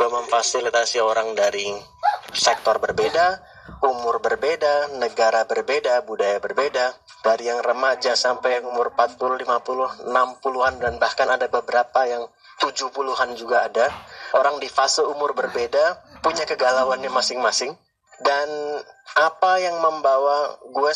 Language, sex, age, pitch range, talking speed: Indonesian, male, 30-49, 125-160 Hz, 120 wpm